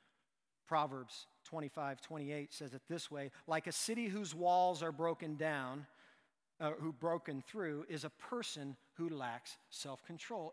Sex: male